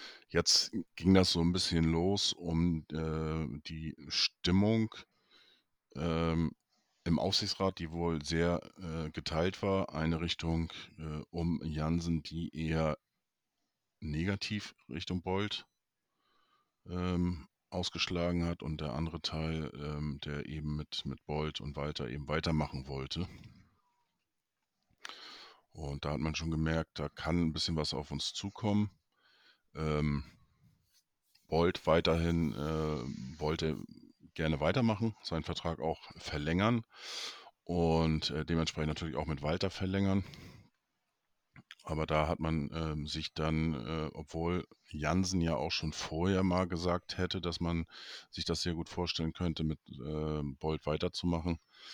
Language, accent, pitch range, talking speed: German, German, 75-85 Hz, 125 wpm